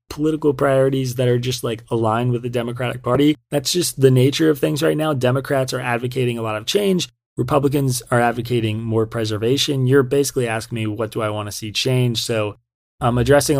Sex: male